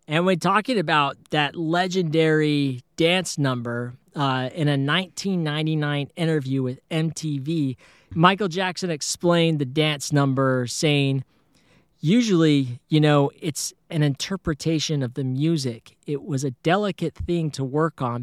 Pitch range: 135-165 Hz